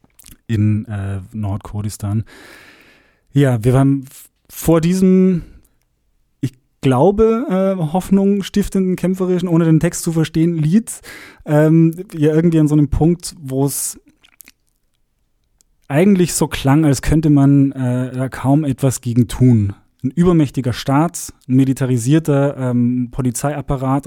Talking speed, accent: 120 wpm, German